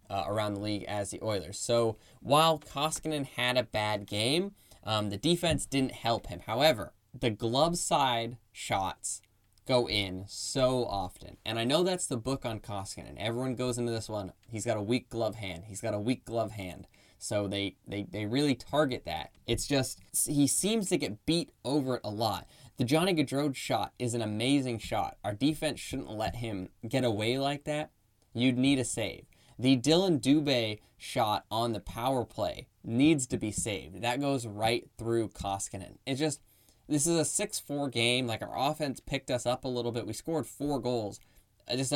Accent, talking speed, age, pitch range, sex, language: American, 190 wpm, 10-29, 105-135 Hz, male, English